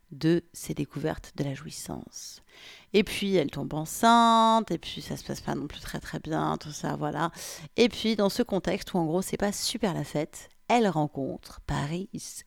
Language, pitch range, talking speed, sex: French, 135-185 Hz, 200 wpm, female